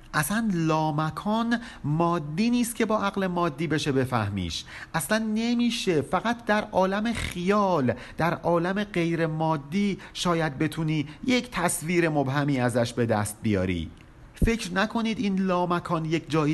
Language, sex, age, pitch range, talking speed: Persian, male, 50-69, 145-195 Hz, 125 wpm